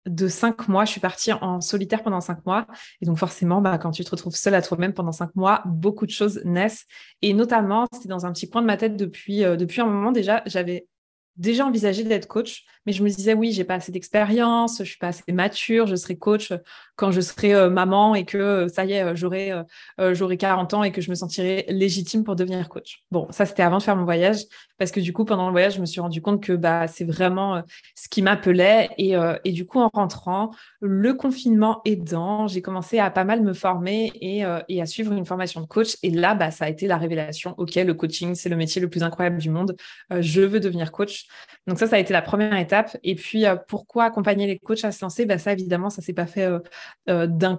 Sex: female